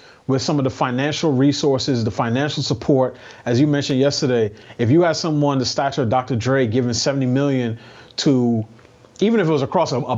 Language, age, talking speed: English, 30-49, 195 wpm